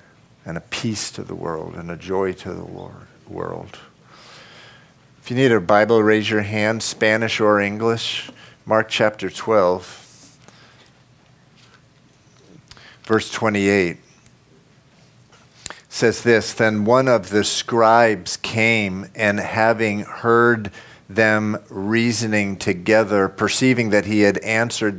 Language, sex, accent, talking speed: English, male, American, 115 wpm